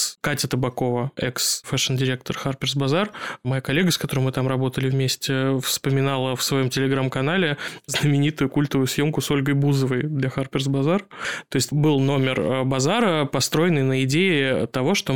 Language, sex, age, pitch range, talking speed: Russian, male, 20-39, 130-145 Hz, 145 wpm